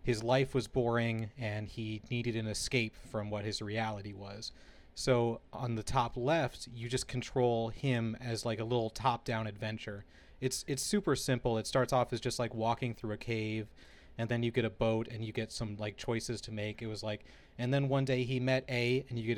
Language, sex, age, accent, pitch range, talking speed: English, male, 30-49, American, 110-125 Hz, 220 wpm